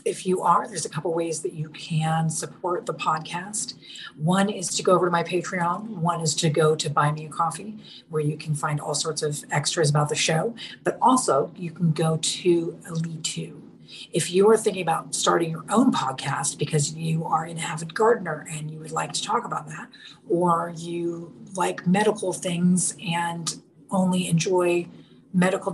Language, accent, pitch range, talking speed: English, American, 160-185 Hz, 190 wpm